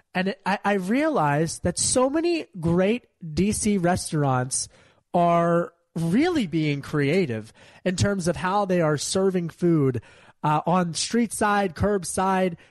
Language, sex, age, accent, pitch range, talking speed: English, male, 30-49, American, 155-205 Hz, 130 wpm